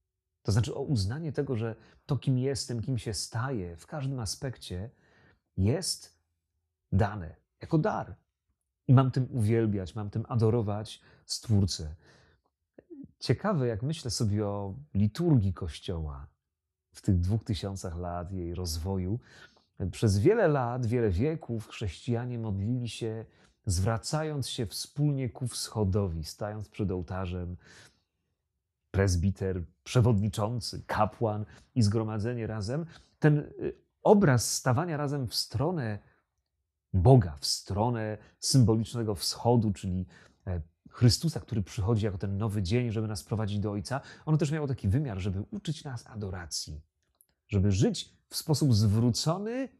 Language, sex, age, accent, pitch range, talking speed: Polish, male, 30-49, native, 90-125 Hz, 120 wpm